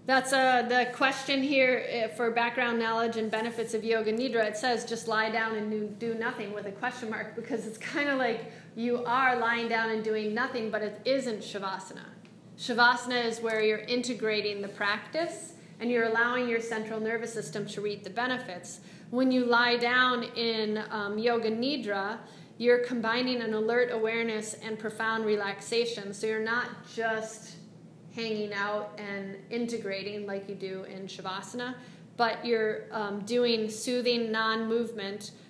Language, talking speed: English, 155 wpm